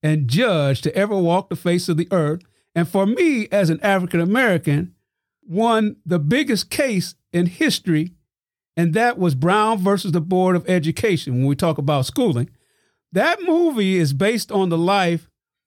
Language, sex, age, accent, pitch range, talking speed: English, male, 50-69, American, 160-215 Hz, 170 wpm